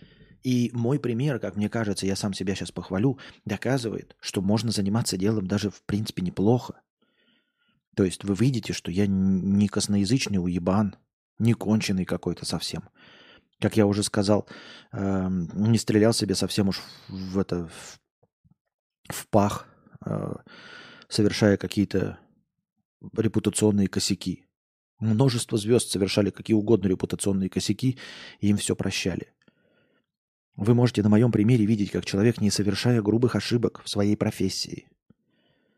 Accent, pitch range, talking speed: native, 100-115 Hz, 130 wpm